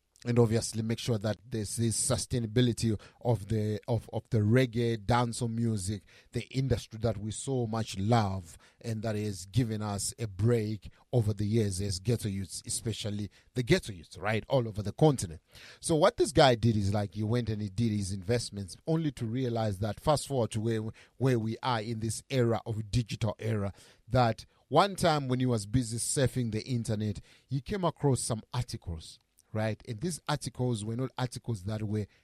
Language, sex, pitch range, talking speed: English, male, 110-130 Hz, 190 wpm